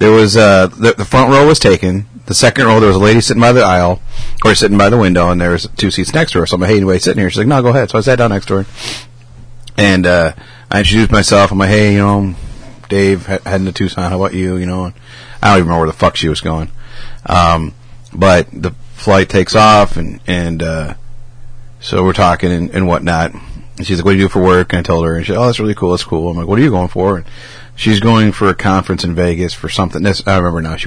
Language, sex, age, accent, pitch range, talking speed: English, male, 40-59, American, 90-120 Hz, 280 wpm